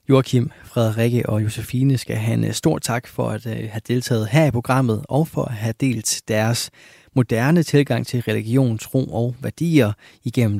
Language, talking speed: Danish, 170 wpm